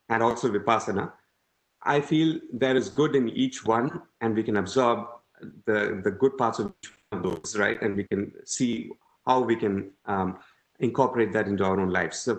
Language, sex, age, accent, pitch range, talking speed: English, male, 30-49, Indian, 110-130 Hz, 195 wpm